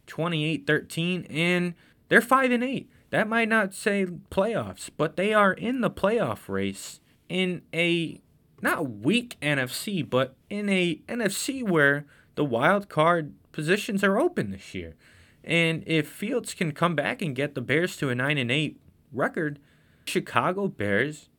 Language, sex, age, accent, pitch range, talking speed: English, male, 20-39, American, 125-180 Hz, 150 wpm